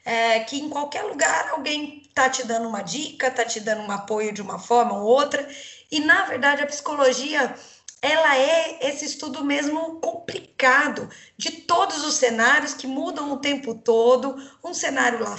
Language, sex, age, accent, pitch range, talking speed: Portuguese, female, 20-39, Brazilian, 230-290 Hz, 170 wpm